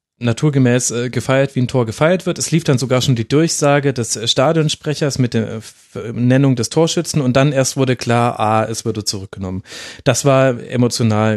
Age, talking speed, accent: 30-49, 175 wpm, German